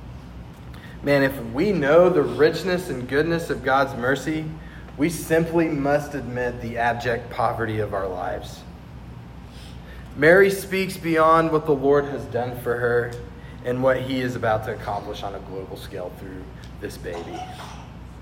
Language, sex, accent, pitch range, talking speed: English, male, American, 125-180 Hz, 150 wpm